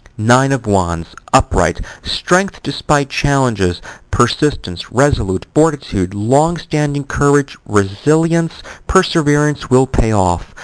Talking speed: 95 wpm